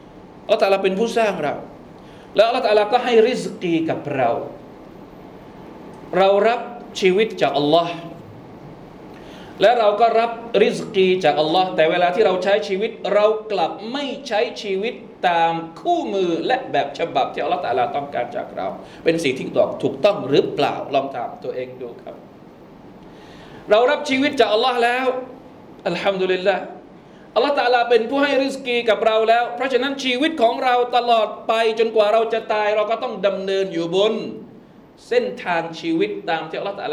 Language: Thai